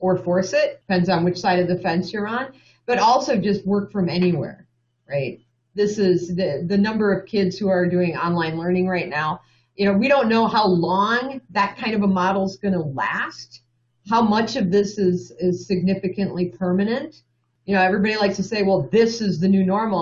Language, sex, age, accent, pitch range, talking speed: English, female, 40-59, American, 165-200 Hz, 205 wpm